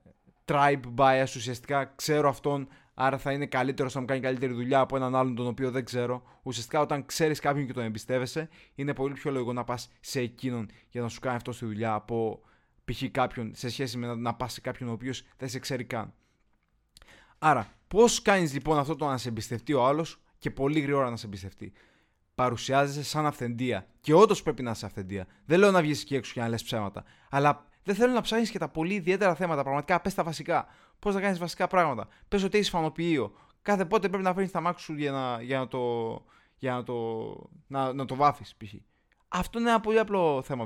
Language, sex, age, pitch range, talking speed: Greek, male, 20-39, 125-170 Hz, 210 wpm